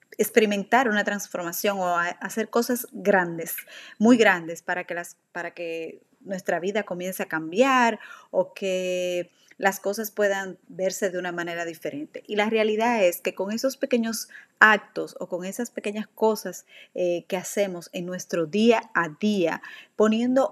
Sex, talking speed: female, 145 wpm